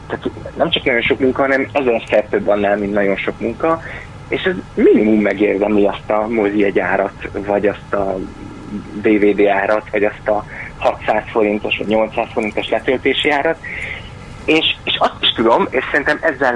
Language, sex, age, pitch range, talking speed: Hungarian, male, 30-49, 105-145 Hz, 165 wpm